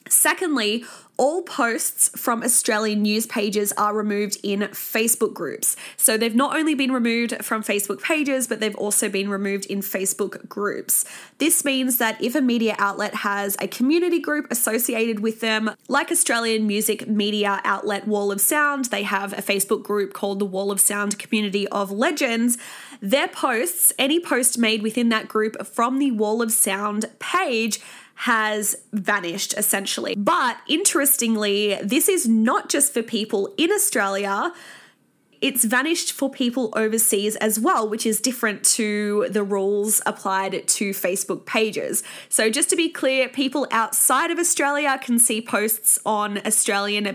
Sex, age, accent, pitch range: female, 20-39, Australian, 205-255 Hz